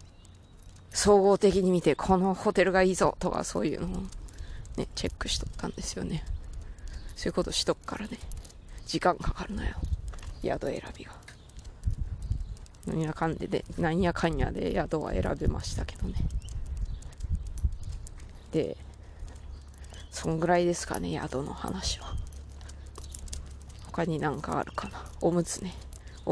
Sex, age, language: female, 20-39, Japanese